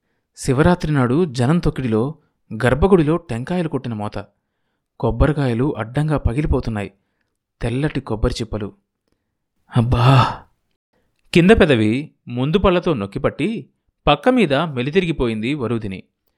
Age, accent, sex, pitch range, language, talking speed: 30-49, native, male, 115-155 Hz, Telugu, 75 wpm